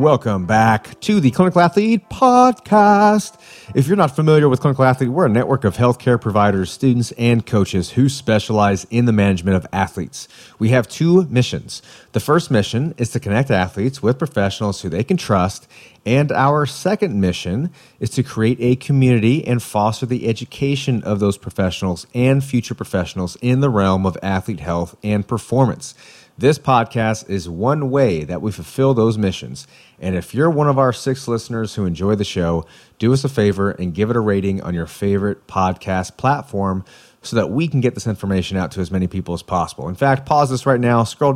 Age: 30-49